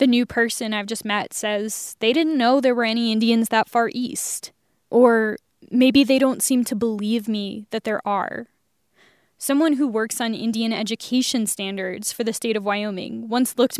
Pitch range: 215-250 Hz